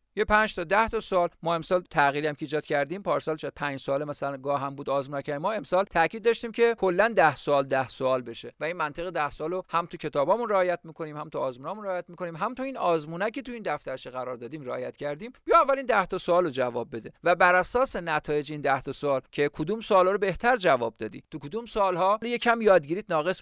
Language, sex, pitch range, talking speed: Persian, male, 140-200 Hz, 220 wpm